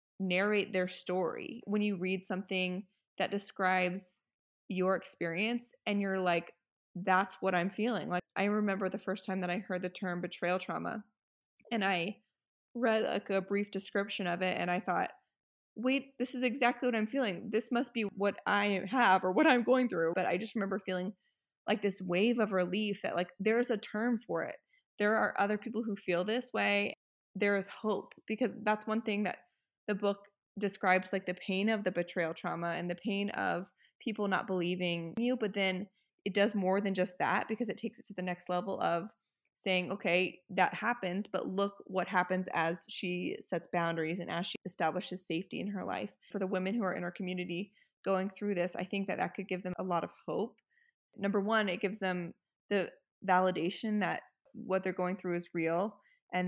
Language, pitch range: English, 180-215 Hz